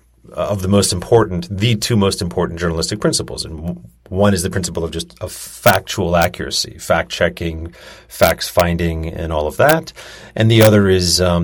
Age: 30-49